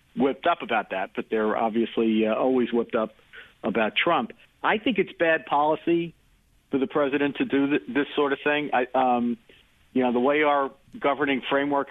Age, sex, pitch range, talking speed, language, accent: 50-69, male, 120-140 Hz, 185 wpm, English, American